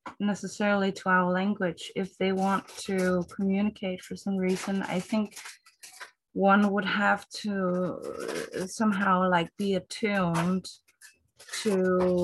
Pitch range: 170-195 Hz